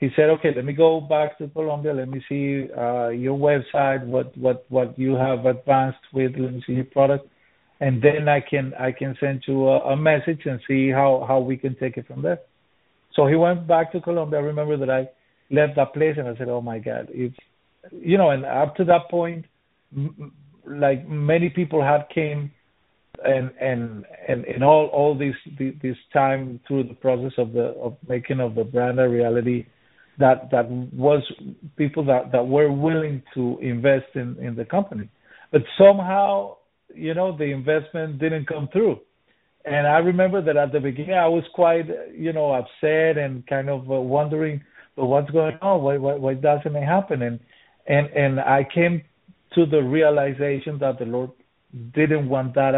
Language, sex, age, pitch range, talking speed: English, male, 50-69, 130-155 Hz, 190 wpm